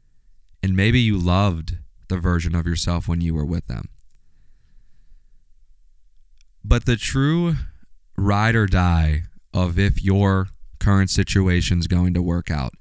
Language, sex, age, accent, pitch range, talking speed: English, male, 20-39, American, 85-105 Hz, 135 wpm